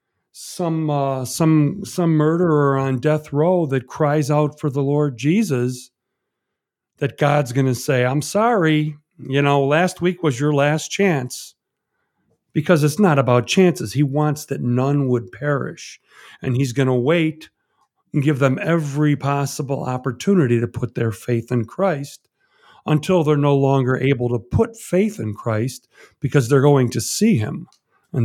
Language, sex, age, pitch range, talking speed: English, male, 50-69, 125-155 Hz, 160 wpm